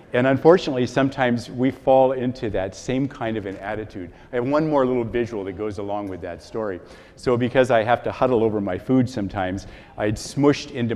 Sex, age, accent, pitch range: male, 50-69, American, 100-130 Hz